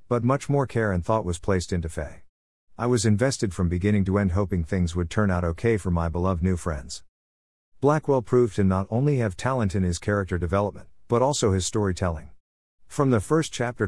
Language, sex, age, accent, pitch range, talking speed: English, male, 50-69, American, 85-115 Hz, 205 wpm